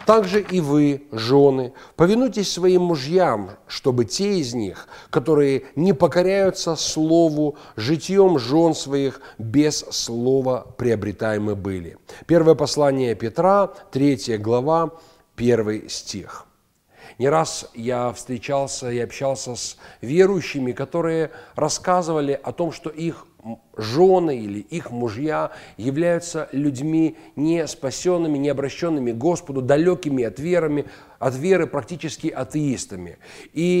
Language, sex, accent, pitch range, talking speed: Russian, male, native, 130-175 Hz, 110 wpm